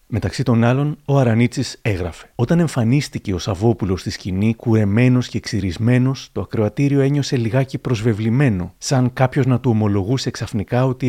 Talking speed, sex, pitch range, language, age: 145 wpm, male, 110-130 Hz, Greek, 30-49